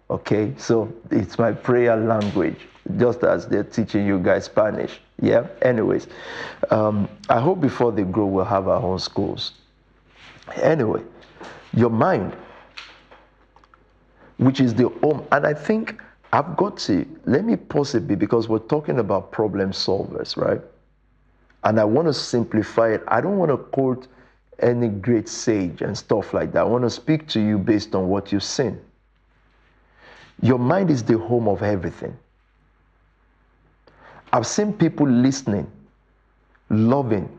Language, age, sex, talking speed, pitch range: English, 50-69, male, 145 wpm, 100-130 Hz